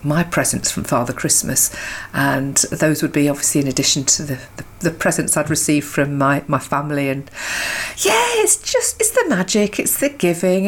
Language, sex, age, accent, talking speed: English, female, 40-59, British, 185 wpm